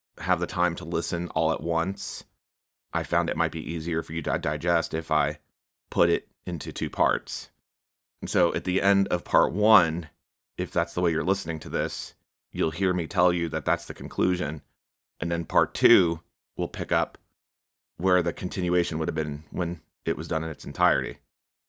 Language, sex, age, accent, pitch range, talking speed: English, male, 30-49, American, 80-90 Hz, 195 wpm